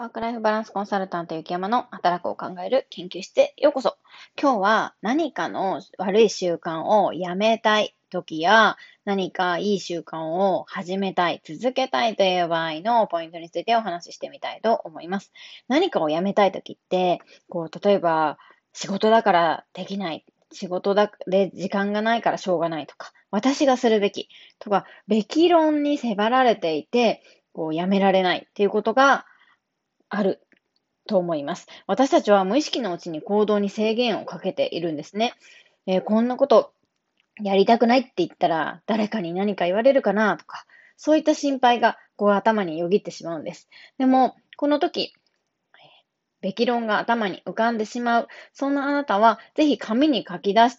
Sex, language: female, Japanese